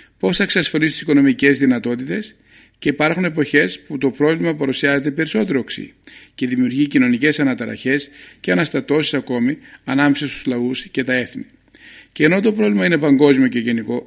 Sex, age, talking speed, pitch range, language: male, 50-69, 155 wpm, 130-170 Hz, Greek